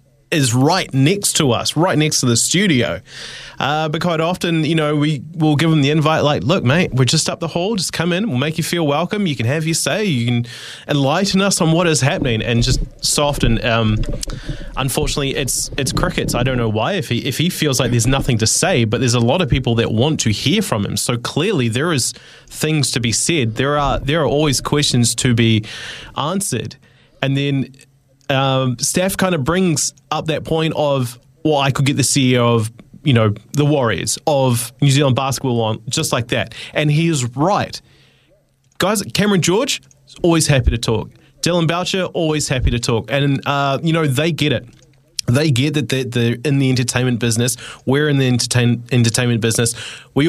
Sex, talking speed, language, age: male, 210 wpm, English, 20-39